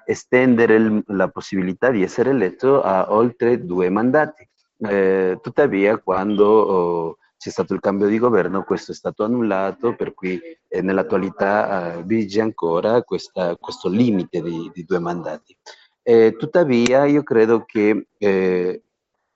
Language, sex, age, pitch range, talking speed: Italian, male, 40-59, 95-115 Hz, 135 wpm